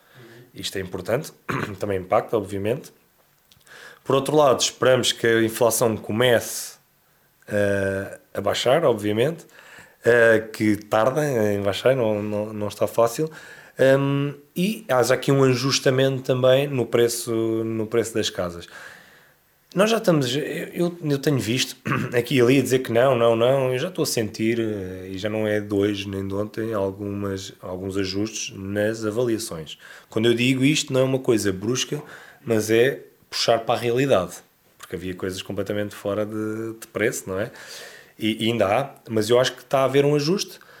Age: 20-39